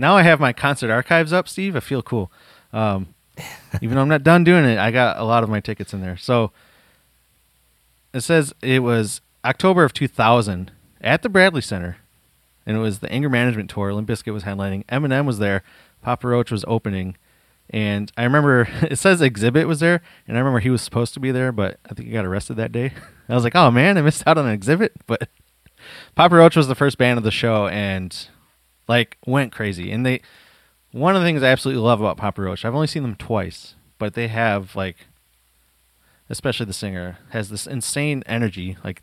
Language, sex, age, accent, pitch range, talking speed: English, male, 30-49, American, 100-135 Hz, 210 wpm